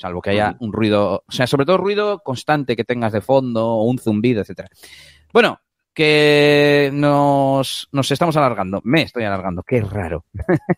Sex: male